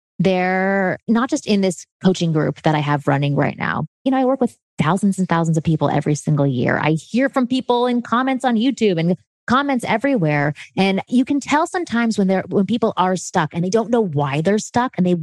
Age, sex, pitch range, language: 30-49, female, 160-230 Hz, English